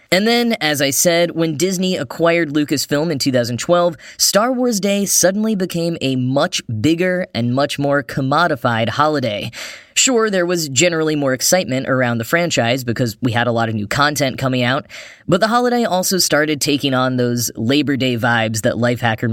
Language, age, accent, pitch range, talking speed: English, 10-29, American, 125-170 Hz, 175 wpm